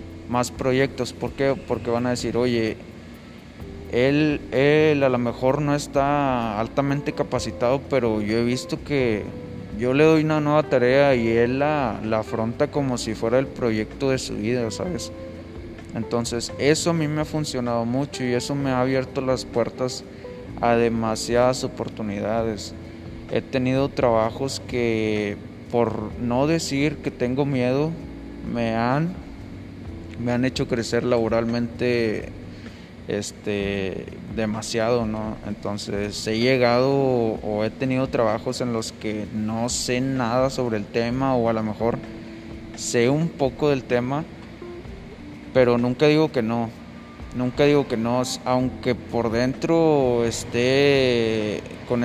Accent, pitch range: Mexican, 110-130 Hz